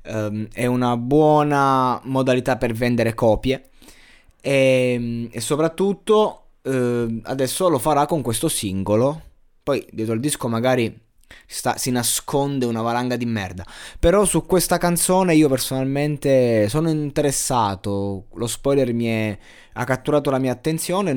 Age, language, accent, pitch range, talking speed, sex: 20-39, Italian, native, 110-140 Hz, 130 wpm, male